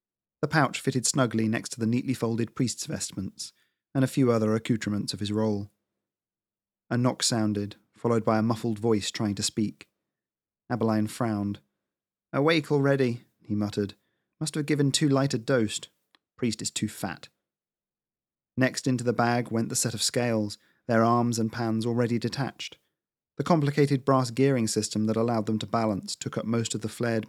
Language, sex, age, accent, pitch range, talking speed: English, male, 30-49, British, 105-125 Hz, 170 wpm